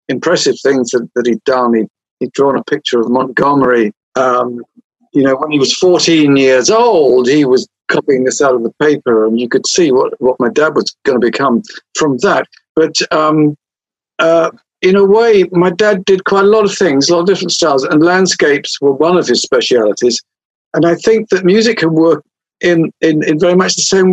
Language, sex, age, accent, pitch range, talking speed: English, male, 50-69, British, 130-180 Hz, 205 wpm